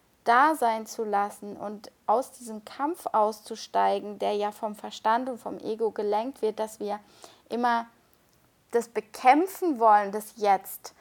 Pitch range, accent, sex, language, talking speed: 215-245 Hz, German, female, German, 140 wpm